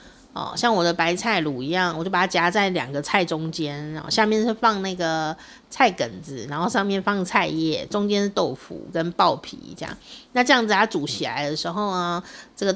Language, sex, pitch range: Chinese, female, 170-250 Hz